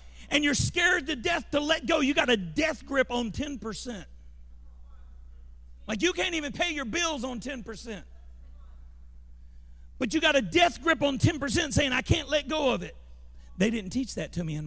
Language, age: English, 50-69